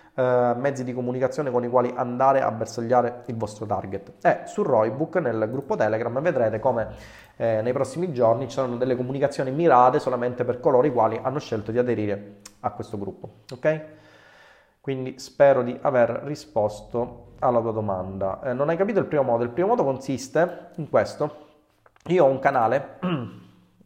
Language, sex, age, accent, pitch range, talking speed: Italian, male, 30-49, native, 115-145 Hz, 175 wpm